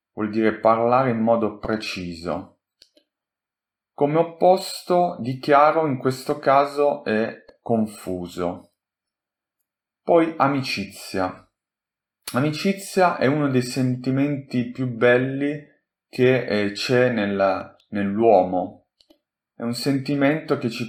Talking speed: 100 wpm